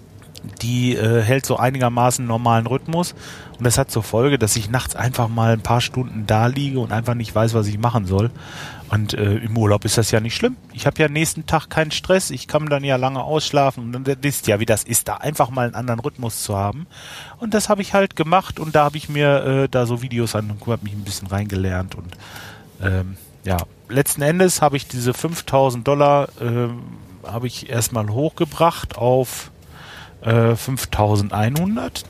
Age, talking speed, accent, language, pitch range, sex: 30-49, 200 wpm, German, German, 110-155 Hz, male